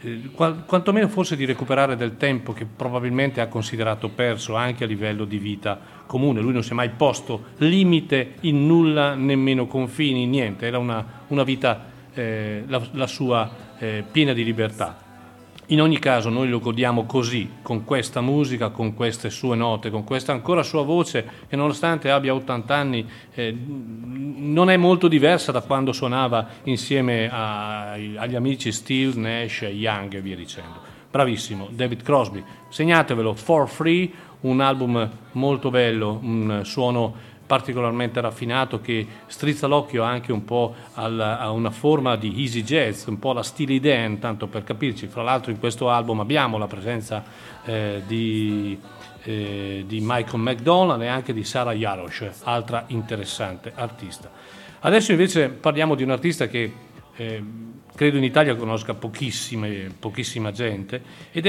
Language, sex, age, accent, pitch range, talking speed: Italian, male, 40-59, native, 110-140 Hz, 150 wpm